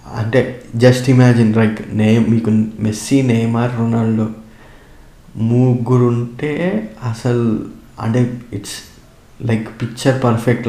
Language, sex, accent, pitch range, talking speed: Telugu, male, native, 110-125 Hz, 95 wpm